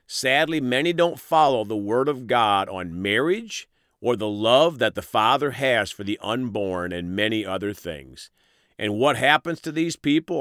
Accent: American